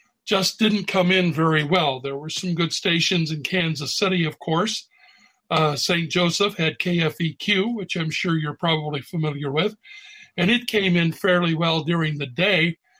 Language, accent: English, American